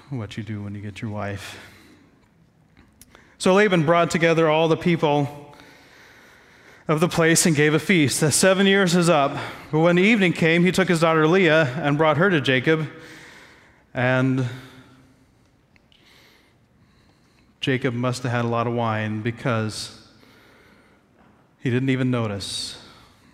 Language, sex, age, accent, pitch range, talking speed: English, male, 30-49, American, 130-175 Hz, 140 wpm